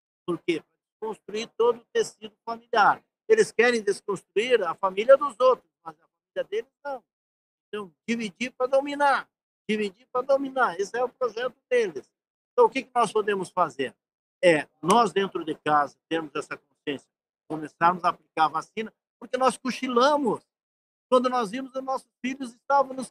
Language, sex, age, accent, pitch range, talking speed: Portuguese, male, 50-69, Brazilian, 185-245 Hz, 160 wpm